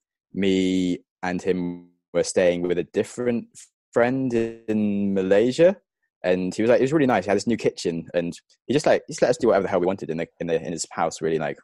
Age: 20-39